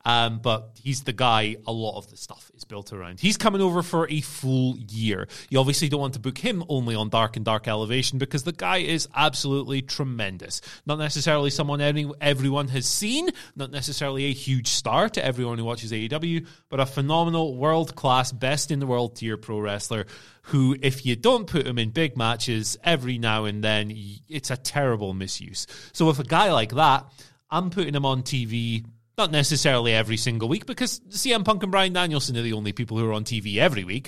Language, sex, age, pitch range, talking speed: English, male, 20-39, 115-160 Hz, 195 wpm